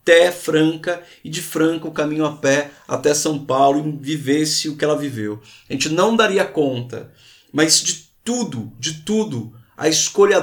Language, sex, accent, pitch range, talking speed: Portuguese, male, Brazilian, 140-190 Hz, 175 wpm